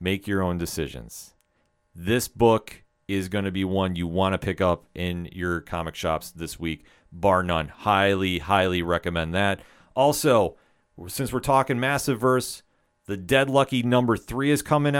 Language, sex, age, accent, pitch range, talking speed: English, male, 40-59, American, 90-120 Hz, 165 wpm